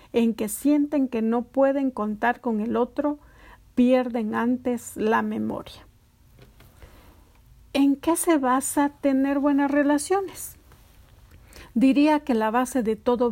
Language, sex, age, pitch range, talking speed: Spanish, female, 50-69, 220-270 Hz, 120 wpm